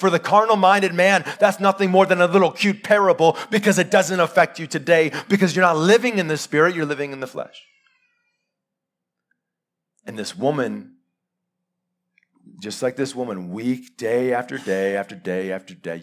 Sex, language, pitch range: male, English, 95-160 Hz